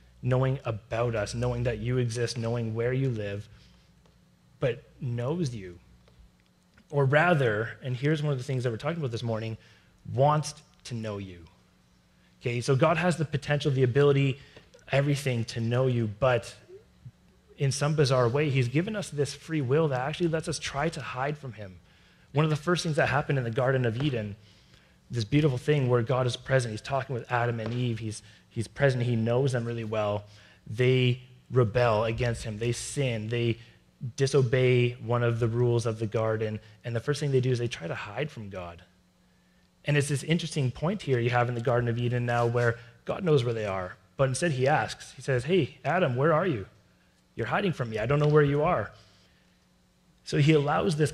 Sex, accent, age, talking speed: male, American, 30-49, 200 wpm